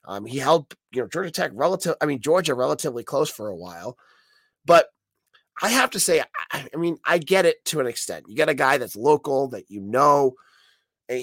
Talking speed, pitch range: 215 wpm, 110-160 Hz